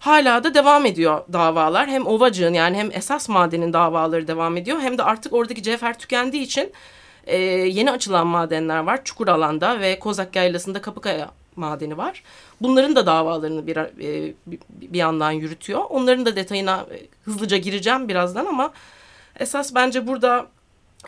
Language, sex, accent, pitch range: Turkish, female, native, 175-245 Hz